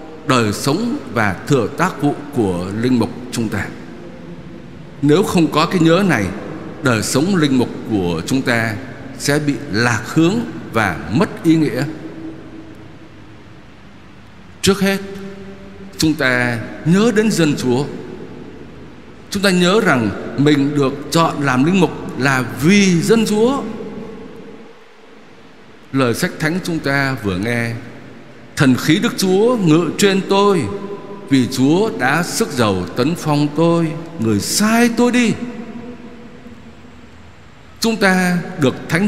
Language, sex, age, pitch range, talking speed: Vietnamese, male, 60-79, 125-205 Hz, 130 wpm